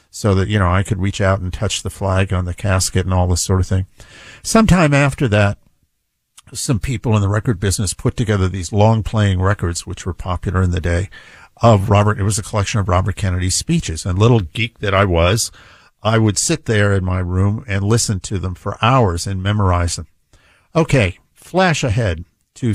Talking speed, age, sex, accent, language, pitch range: 205 wpm, 50-69, male, American, English, 95-110 Hz